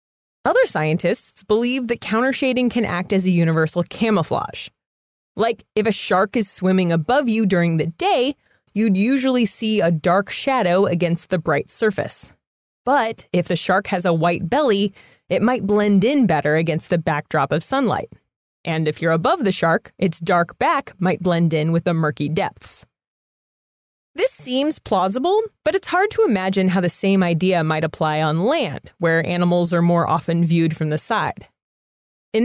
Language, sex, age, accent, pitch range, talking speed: English, female, 20-39, American, 170-230 Hz, 170 wpm